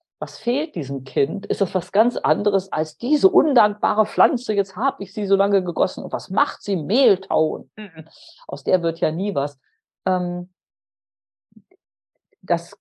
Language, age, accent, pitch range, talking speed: German, 50-69, German, 160-205 Hz, 150 wpm